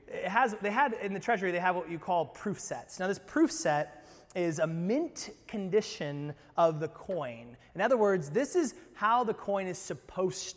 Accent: American